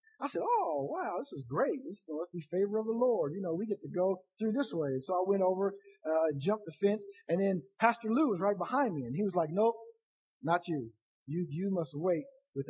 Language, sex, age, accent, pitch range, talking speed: English, male, 50-69, American, 155-230 Hz, 245 wpm